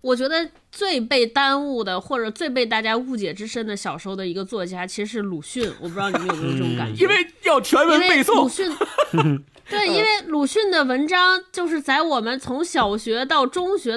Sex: female